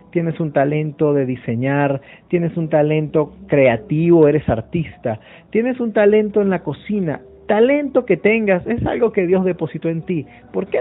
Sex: male